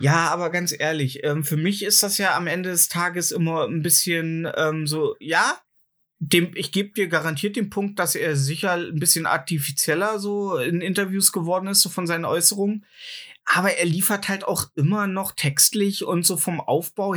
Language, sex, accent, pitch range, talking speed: German, male, German, 150-190 Hz, 180 wpm